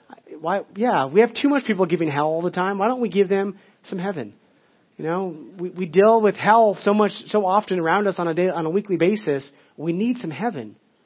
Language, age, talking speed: English, 30-49, 235 wpm